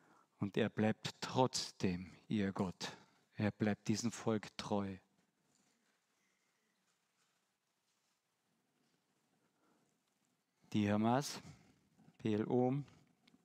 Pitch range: 110-145 Hz